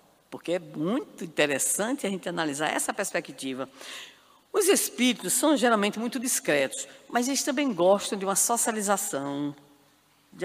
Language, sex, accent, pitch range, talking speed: Portuguese, female, Brazilian, 195-285 Hz, 130 wpm